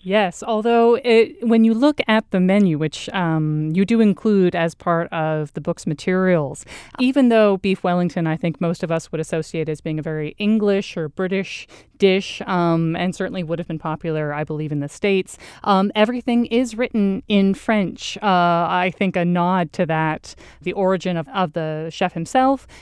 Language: English